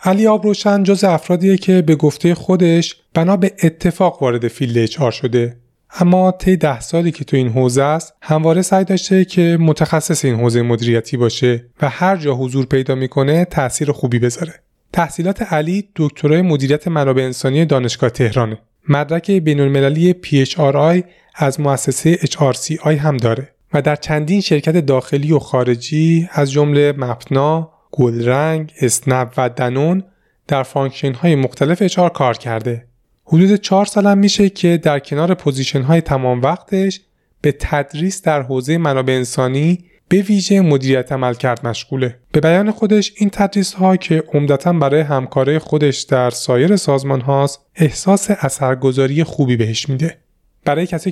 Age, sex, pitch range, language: 30-49, male, 130-175 Hz, Persian